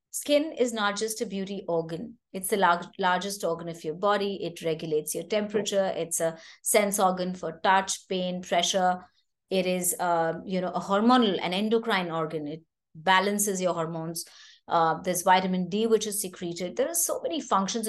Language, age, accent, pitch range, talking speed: English, 30-49, Indian, 175-220 Hz, 180 wpm